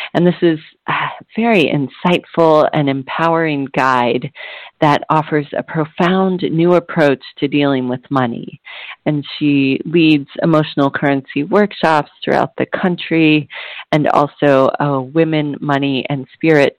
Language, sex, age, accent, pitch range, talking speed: English, female, 40-59, American, 140-165 Hz, 125 wpm